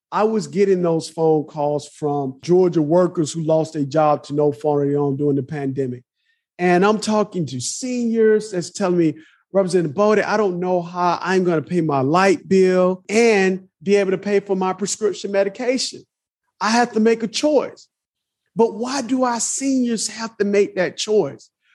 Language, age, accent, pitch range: English, 50-69, American, 170-230 Hz